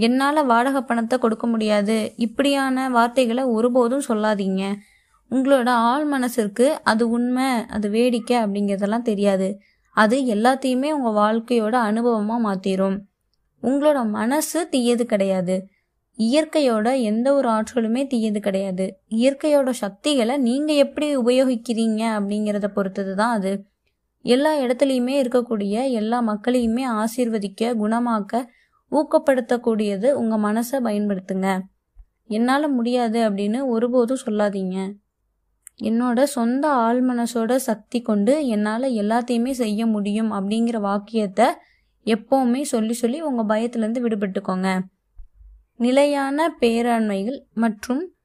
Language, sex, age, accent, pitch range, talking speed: Tamil, female, 20-39, native, 215-260 Hz, 100 wpm